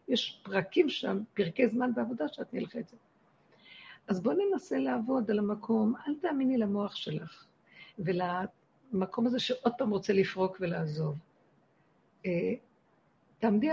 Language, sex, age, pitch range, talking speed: Hebrew, female, 50-69, 185-245 Hz, 120 wpm